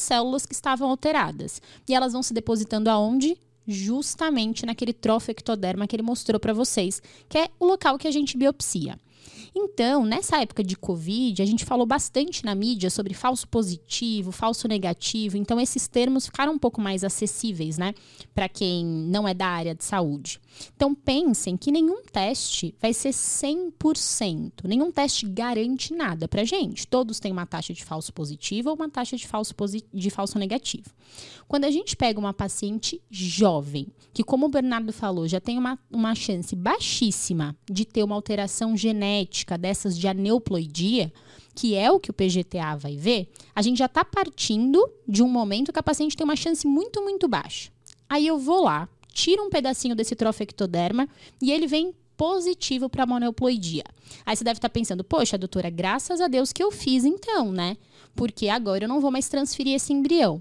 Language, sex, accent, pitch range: Portuguese, female, Brazilian, 200-280 Hz